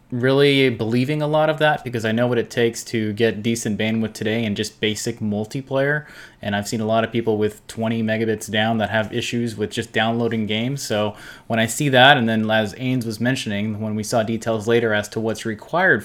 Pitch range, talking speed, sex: 105-120 Hz, 220 wpm, male